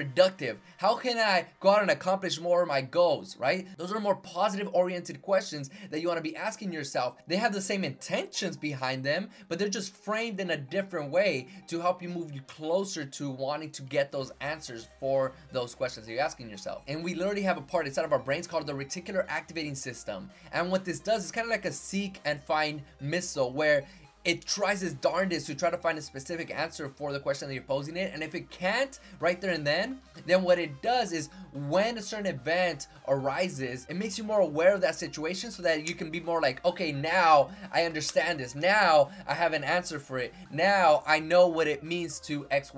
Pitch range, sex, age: 150-195 Hz, male, 20-39